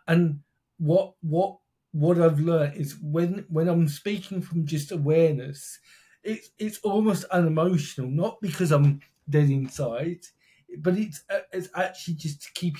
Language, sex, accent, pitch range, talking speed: English, male, British, 145-175 Hz, 140 wpm